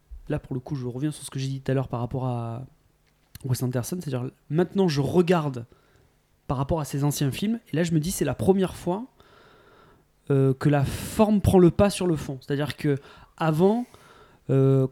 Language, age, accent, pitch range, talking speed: French, 20-39, French, 130-180 Hz, 205 wpm